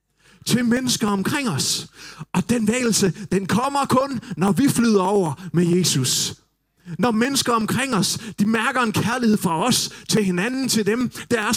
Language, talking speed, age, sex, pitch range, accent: Danish, 165 wpm, 30-49, male, 150-210 Hz, native